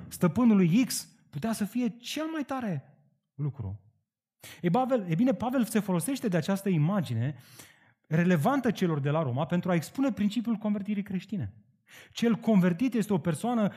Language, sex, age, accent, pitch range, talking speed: Romanian, male, 30-49, native, 135-220 Hz, 155 wpm